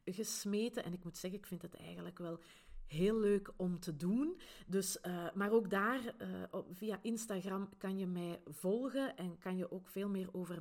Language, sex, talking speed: Dutch, female, 180 wpm